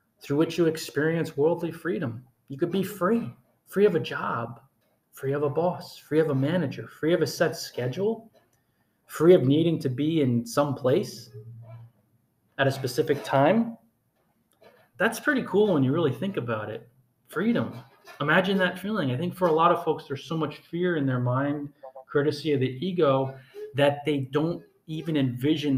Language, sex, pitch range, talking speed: English, male, 135-170 Hz, 175 wpm